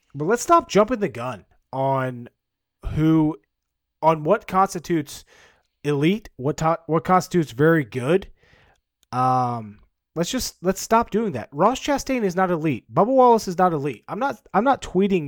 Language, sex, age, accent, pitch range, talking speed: English, male, 30-49, American, 145-195 Hz, 155 wpm